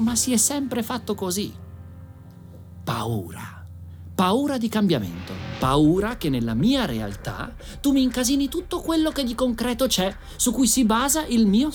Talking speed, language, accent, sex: 155 wpm, Italian, native, male